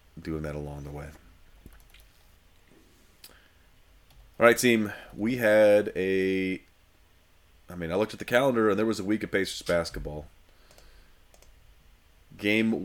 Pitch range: 80-95 Hz